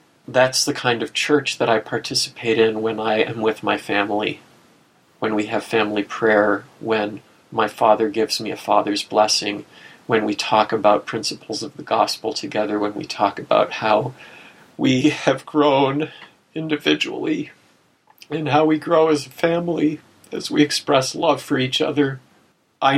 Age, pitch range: 40-59, 115-150 Hz